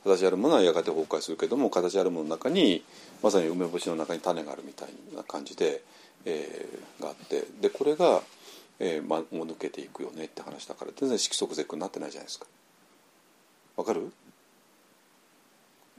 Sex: male